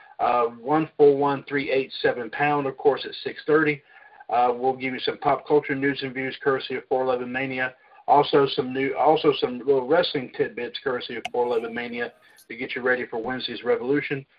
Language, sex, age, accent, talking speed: English, male, 50-69, American, 200 wpm